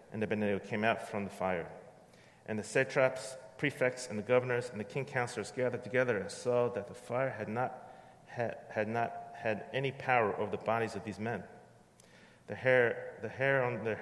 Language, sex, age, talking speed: English, male, 40-59, 195 wpm